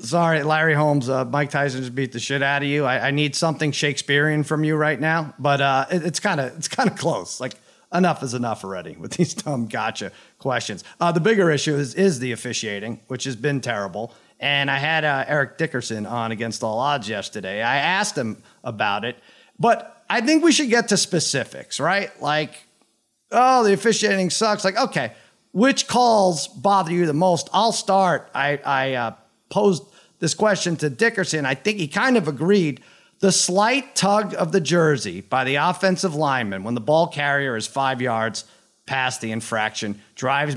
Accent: American